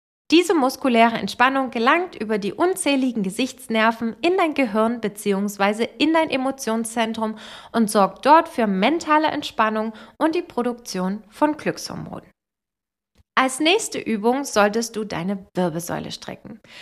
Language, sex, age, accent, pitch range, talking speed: German, female, 20-39, German, 220-290 Hz, 120 wpm